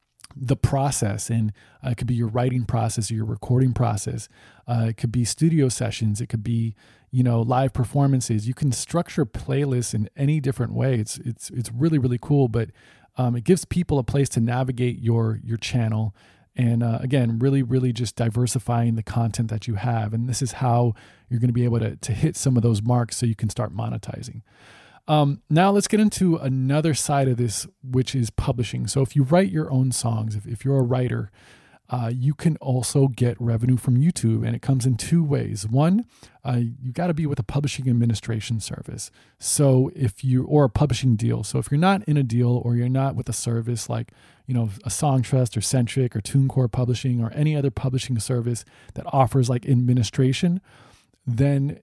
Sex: male